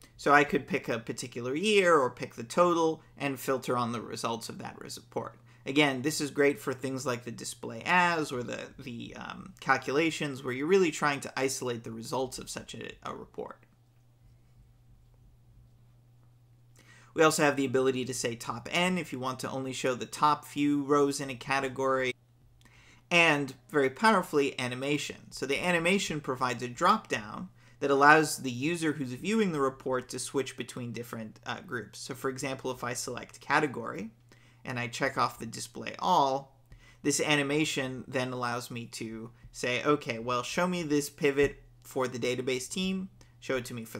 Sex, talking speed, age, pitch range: male, 175 wpm, 40-59, 120-145 Hz